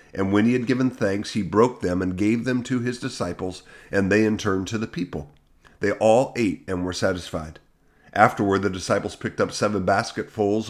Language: English